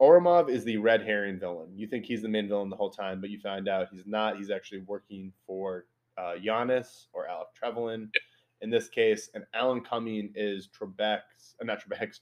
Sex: male